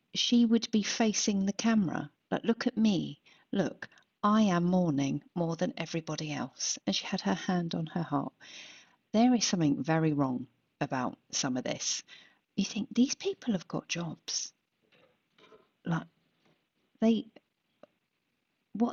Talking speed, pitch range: 145 wpm, 155-215 Hz